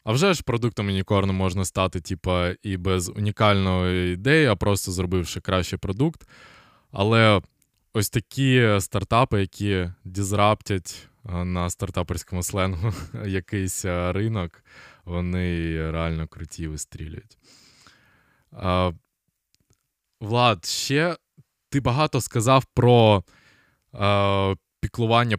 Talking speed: 90 wpm